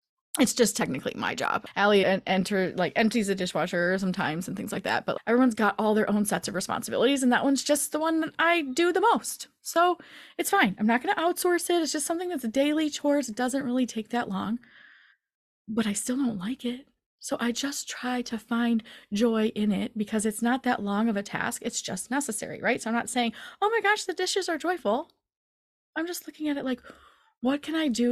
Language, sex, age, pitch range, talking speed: English, female, 20-39, 200-270 Hz, 230 wpm